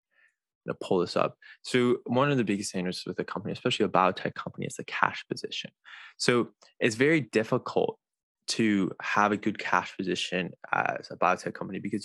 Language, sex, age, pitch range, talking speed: English, male, 20-39, 95-115 Hz, 180 wpm